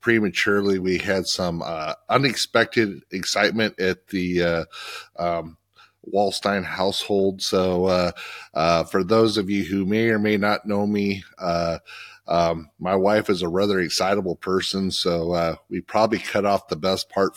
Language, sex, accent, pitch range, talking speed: English, male, American, 95-110 Hz, 155 wpm